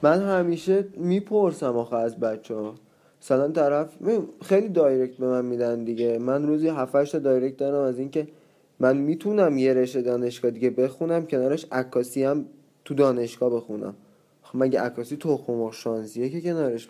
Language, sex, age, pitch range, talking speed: Persian, male, 20-39, 125-155 Hz, 155 wpm